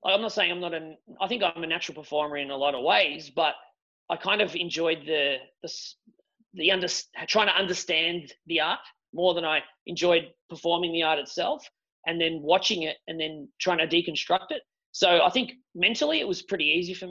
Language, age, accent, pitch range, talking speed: English, 30-49, Australian, 150-180 Hz, 205 wpm